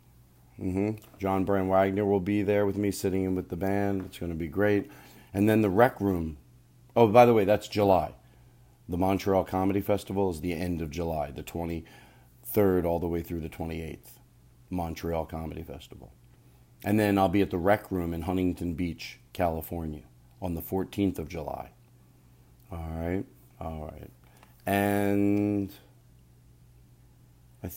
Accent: American